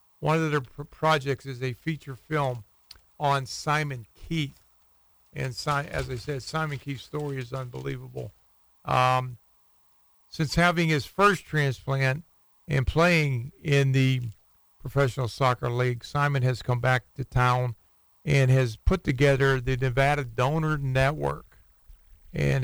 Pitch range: 125-145 Hz